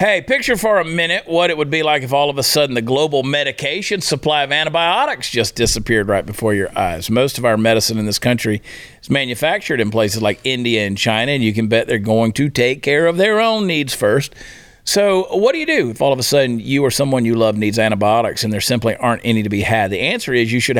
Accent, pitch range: American, 110-140 Hz